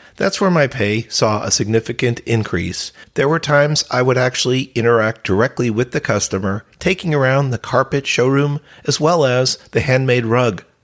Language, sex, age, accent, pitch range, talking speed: English, male, 50-69, American, 105-145 Hz, 165 wpm